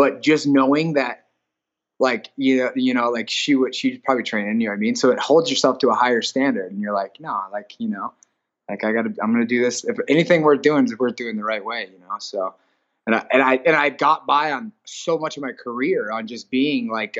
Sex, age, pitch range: male, 20-39, 110-155 Hz